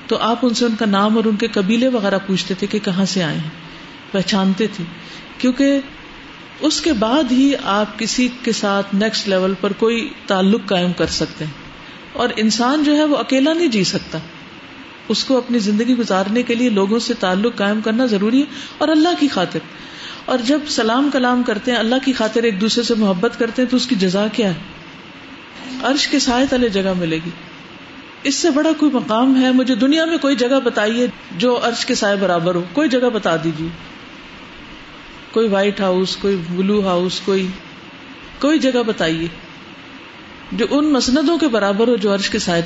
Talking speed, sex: 190 wpm, female